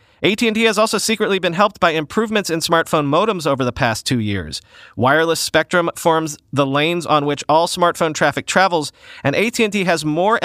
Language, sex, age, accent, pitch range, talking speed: English, male, 40-59, American, 125-175 Hz, 180 wpm